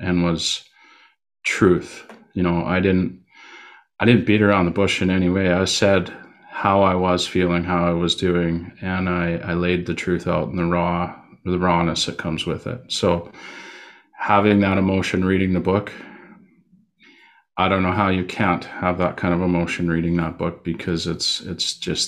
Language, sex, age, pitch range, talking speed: English, male, 30-49, 85-100 Hz, 180 wpm